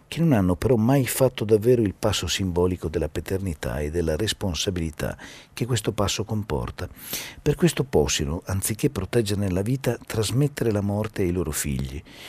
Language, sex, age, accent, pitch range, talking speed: Italian, male, 50-69, native, 80-115 Hz, 155 wpm